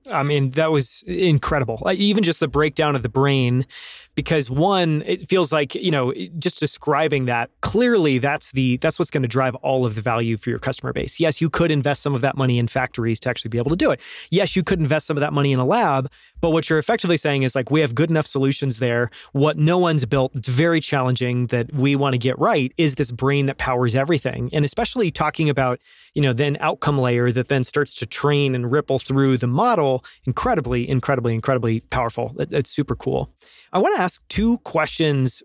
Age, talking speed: 30-49, 220 wpm